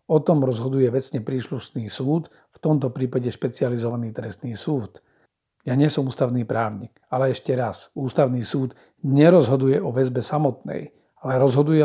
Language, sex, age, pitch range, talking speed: Slovak, male, 50-69, 125-150 Hz, 135 wpm